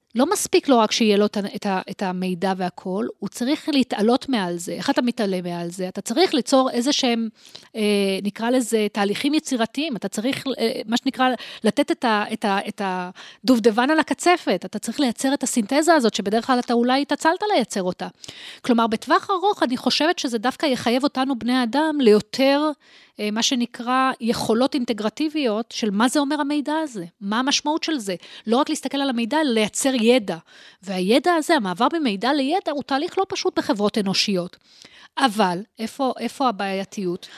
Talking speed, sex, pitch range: 160 wpm, female, 210-285 Hz